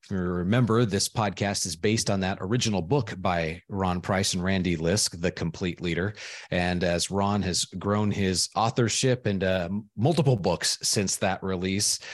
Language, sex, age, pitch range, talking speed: English, male, 30-49, 90-110 Hz, 160 wpm